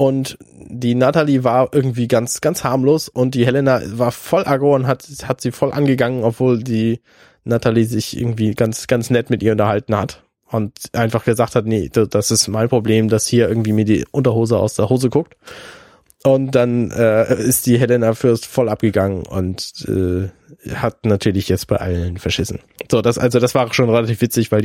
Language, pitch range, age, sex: German, 105-125 Hz, 20-39, male